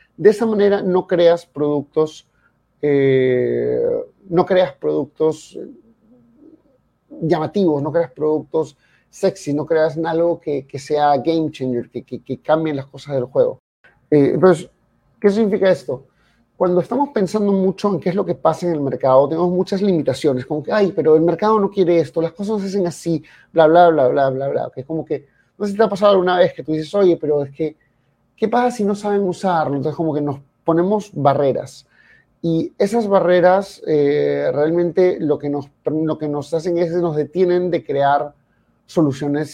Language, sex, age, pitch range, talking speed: Spanish, male, 30-49, 145-185 Hz, 190 wpm